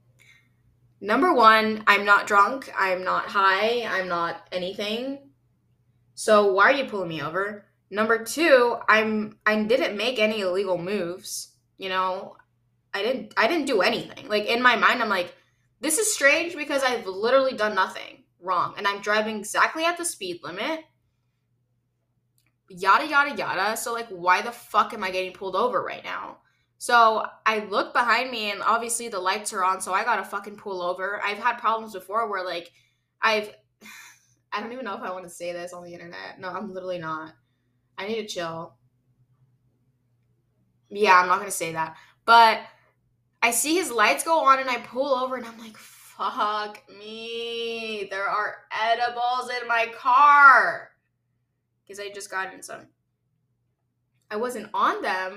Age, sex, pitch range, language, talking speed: 10-29, female, 160-230 Hz, English, 170 wpm